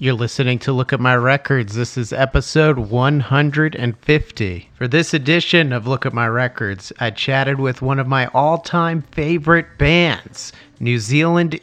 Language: English